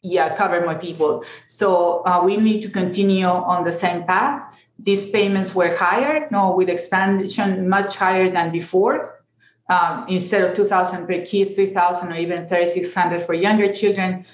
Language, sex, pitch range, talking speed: English, female, 175-205 Hz, 160 wpm